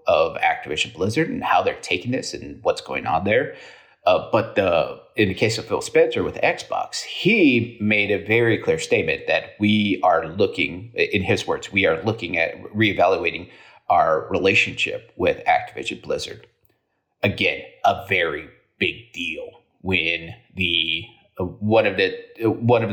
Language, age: English, 30-49